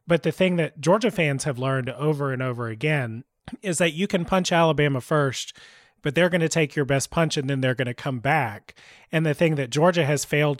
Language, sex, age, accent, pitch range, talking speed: English, male, 30-49, American, 125-155 Hz, 230 wpm